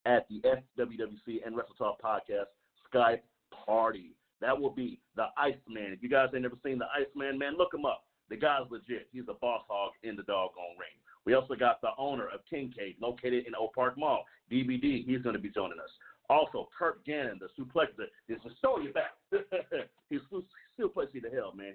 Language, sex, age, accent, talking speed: English, male, 40-59, American, 195 wpm